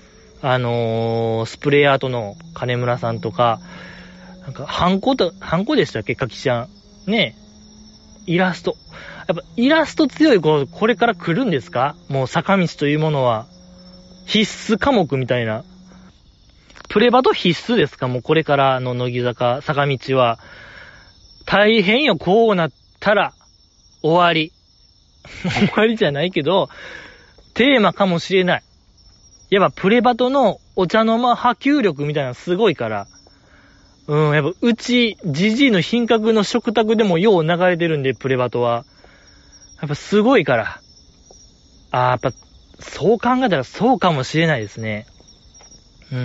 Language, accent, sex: Japanese, native, male